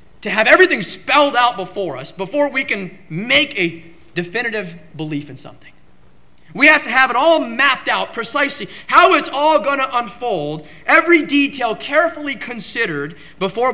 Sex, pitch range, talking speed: male, 160-240 Hz, 155 wpm